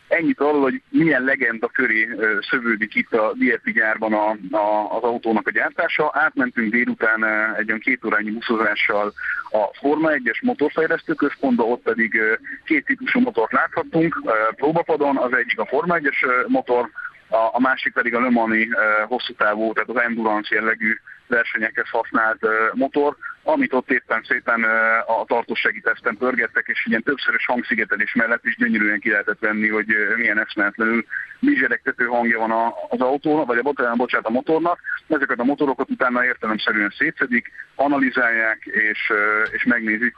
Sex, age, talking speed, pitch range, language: male, 30-49, 140 wpm, 110-160 Hz, Hungarian